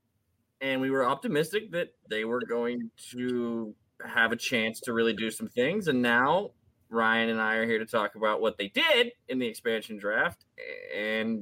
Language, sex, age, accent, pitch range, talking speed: English, male, 20-39, American, 115-175 Hz, 185 wpm